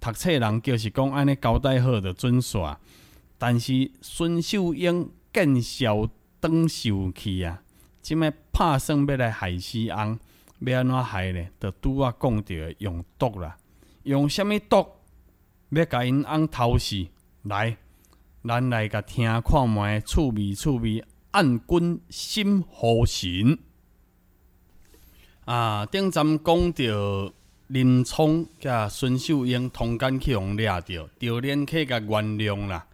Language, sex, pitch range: Chinese, male, 105-145 Hz